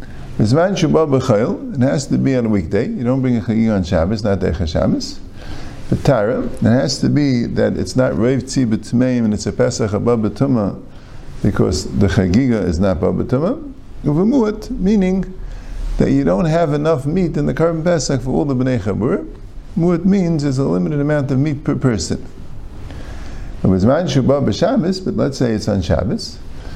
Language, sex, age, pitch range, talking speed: English, male, 50-69, 100-150 Hz, 165 wpm